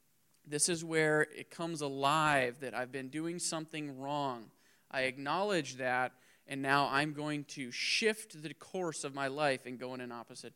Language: English